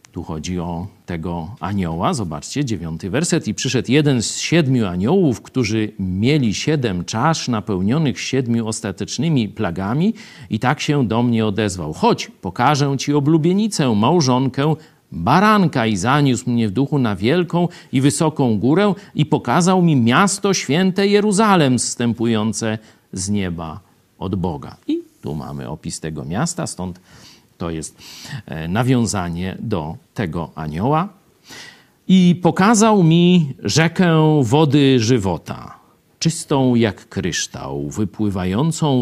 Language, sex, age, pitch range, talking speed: Polish, male, 50-69, 105-170 Hz, 120 wpm